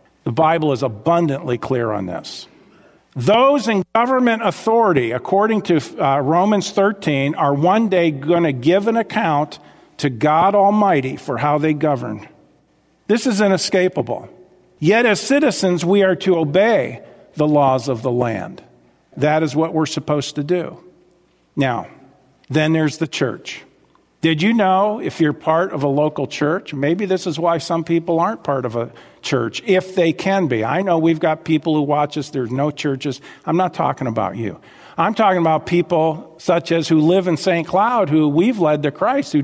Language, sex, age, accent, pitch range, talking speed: English, male, 50-69, American, 145-185 Hz, 175 wpm